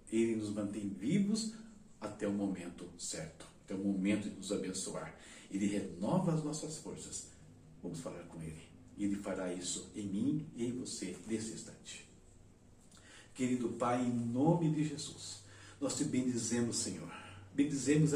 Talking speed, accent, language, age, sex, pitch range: 145 wpm, Brazilian, Portuguese, 60-79, male, 115-170 Hz